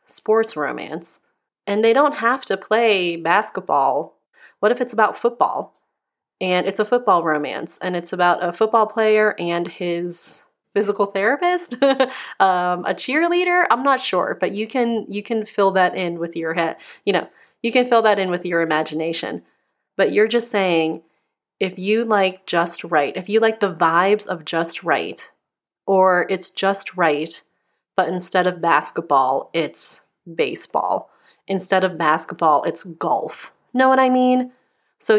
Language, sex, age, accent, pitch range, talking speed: English, female, 30-49, American, 175-225 Hz, 160 wpm